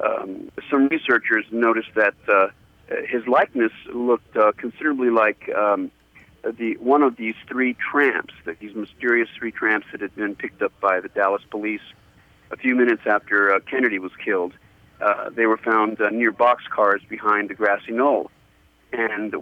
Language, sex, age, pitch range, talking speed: English, male, 50-69, 110-135 Hz, 165 wpm